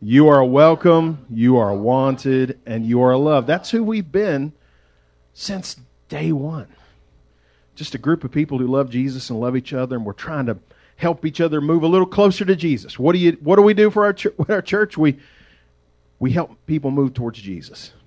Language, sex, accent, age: English, male, American, 40-59